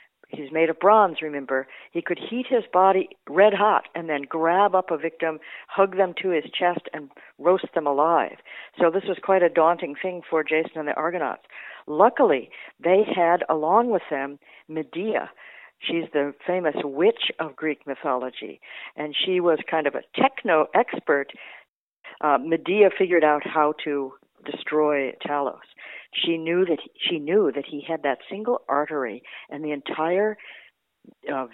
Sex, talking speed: female, 160 wpm